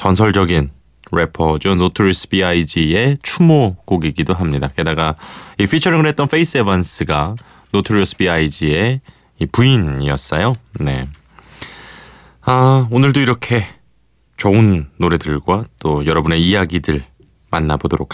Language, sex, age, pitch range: Korean, male, 20-39, 80-130 Hz